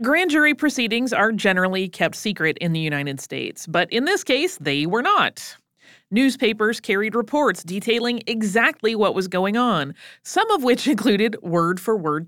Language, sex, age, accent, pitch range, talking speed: English, female, 30-49, American, 180-240 Hz, 155 wpm